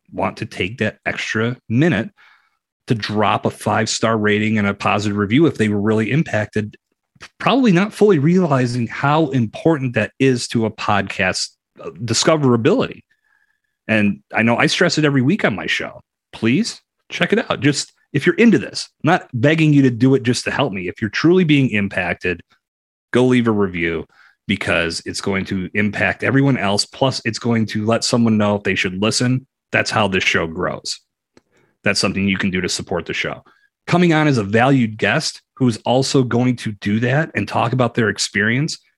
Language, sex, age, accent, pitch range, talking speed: English, male, 30-49, American, 105-135 Hz, 185 wpm